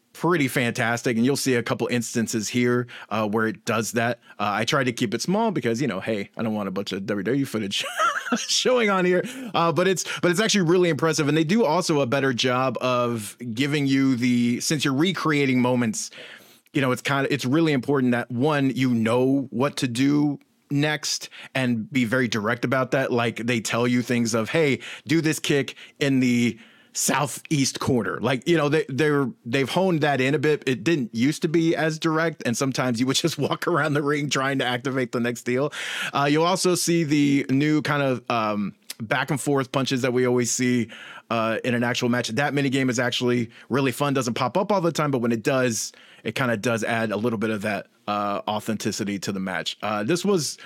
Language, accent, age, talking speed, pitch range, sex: English, American, 20-39, 220 wpm, 115-150 Hz, male